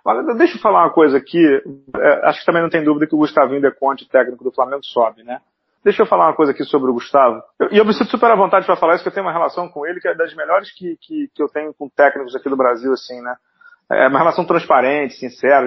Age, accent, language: 40-59, Brazilian, Portuguese